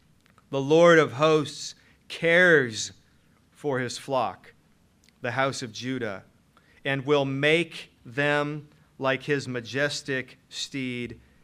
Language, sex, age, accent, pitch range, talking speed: English, male, 40-59, American, 130-165 Hz, 105 wpm